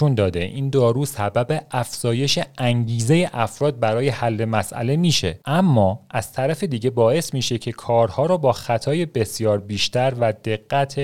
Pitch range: 100-135 Hz